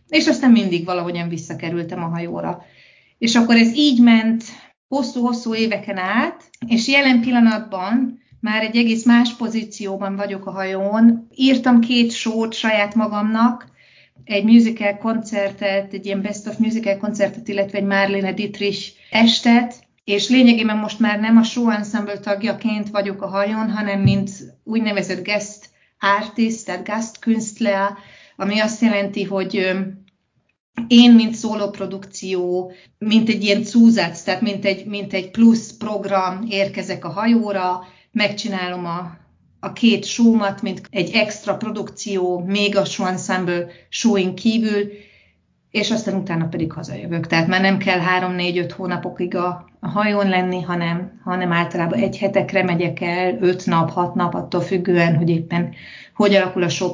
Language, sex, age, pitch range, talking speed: Hungarian, female, 30-49, 185-225 Hz, 145 wpm